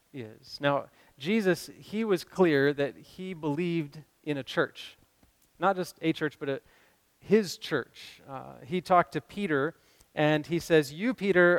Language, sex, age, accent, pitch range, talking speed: English, male, 30-49, American, 140-180 Hz, 145 wpm